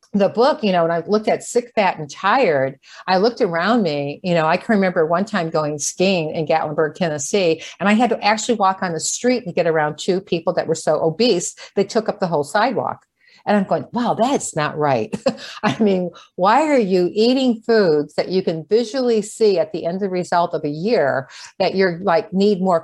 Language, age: English, 50-69